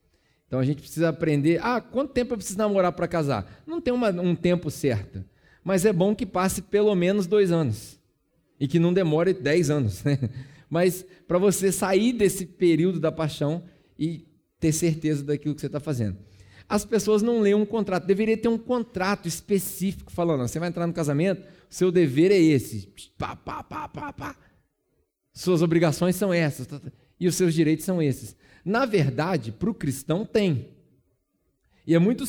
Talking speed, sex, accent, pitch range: 175 wpm, male, Brazilian, 150-200 Hz